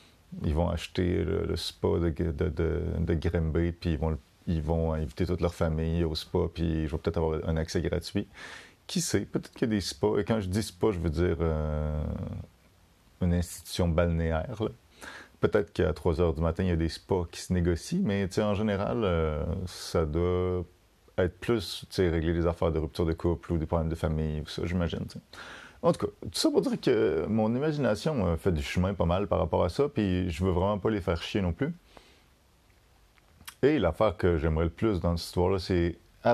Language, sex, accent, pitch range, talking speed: French, male, French, 85-100 Hz, 215 wpm